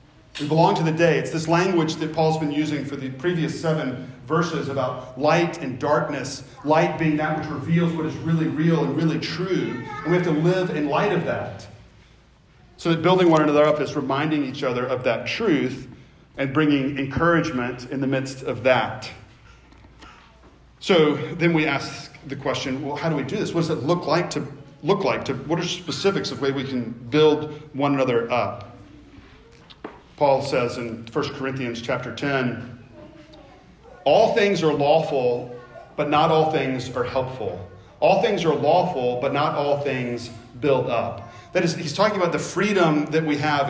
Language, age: English, 40-59